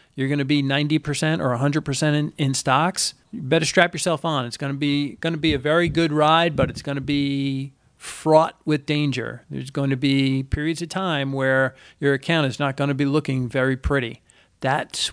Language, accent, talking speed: English, American, 185 wpm